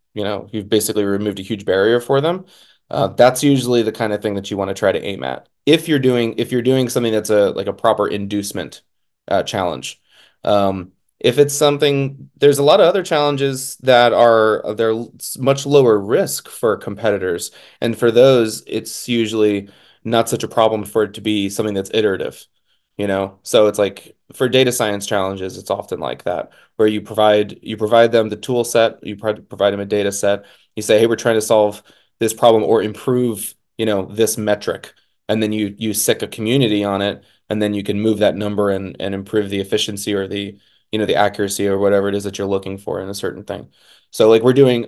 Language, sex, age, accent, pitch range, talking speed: English, male, 20-39, American, 100-120 Hz, 215 wpm